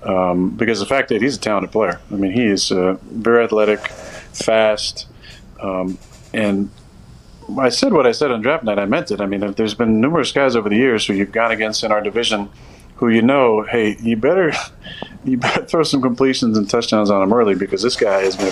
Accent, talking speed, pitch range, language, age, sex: American, 215 wpm, 100-110 Hz, English, 40-59, male